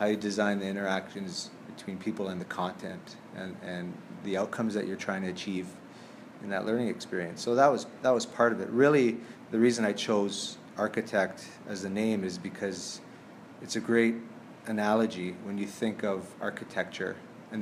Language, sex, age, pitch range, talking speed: English, male, 30-49, 95-115 Hz, 175 wpm